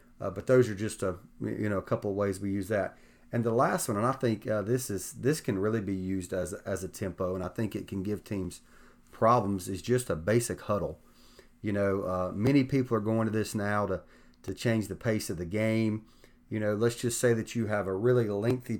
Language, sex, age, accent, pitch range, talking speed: English, male, 30-49, American, 95-115 Hz, 245 wpm